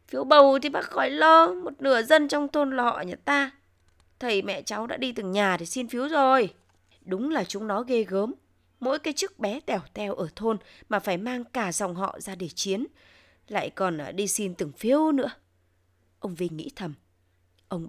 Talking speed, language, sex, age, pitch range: 200 wpm, Vietnamese, female, 20-39, 180-260 Hz